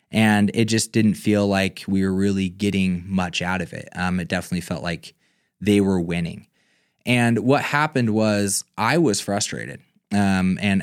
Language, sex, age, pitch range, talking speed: English, male, 20-39, 95-115 Hz, 170 wpm